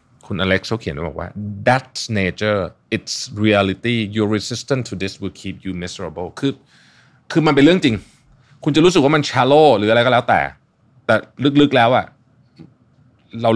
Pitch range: 90-125 Hz